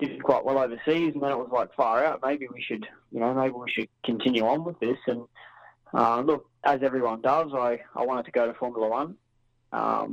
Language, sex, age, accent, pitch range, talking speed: English, male, 20-39, Australian, 115-135 Hz, 225 wpm